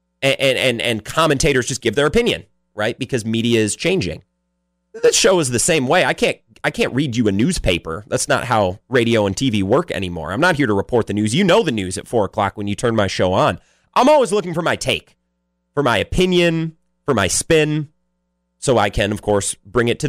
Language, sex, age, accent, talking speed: English, male, 30-49, American, 225 wpm